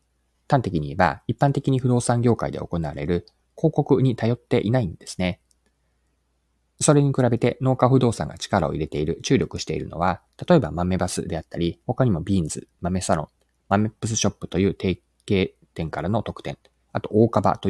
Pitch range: 80-130 Hz